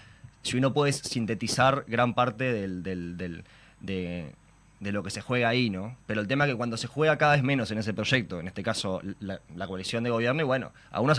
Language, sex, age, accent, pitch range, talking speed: Spanish, male, 20-39, Argentinian, 95-135 Hz, 210 wpm